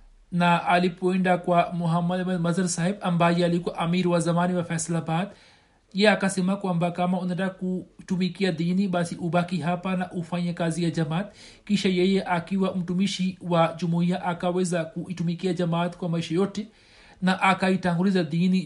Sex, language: male, Swahili